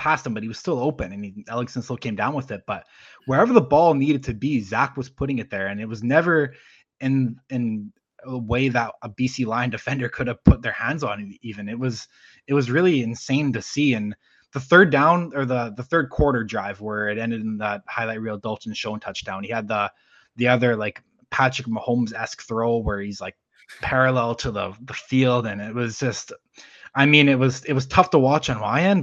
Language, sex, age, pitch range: English, male, 20-39, 110-130 Hz